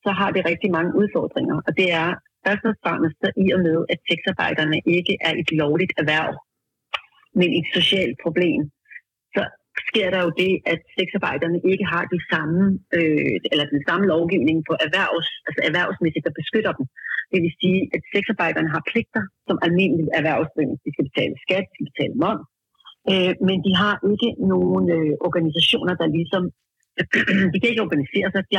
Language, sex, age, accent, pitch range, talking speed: Danish, female, 40-59, native, 160-190 Hz, 170 wpm